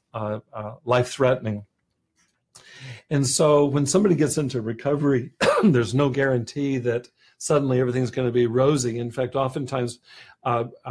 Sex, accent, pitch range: male, American, 120-140 Hz